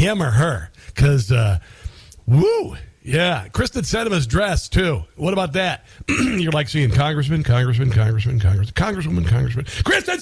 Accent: American